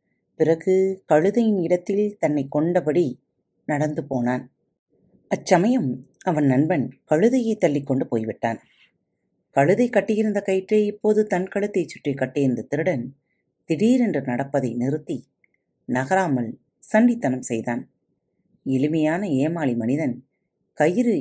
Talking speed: 90 wpm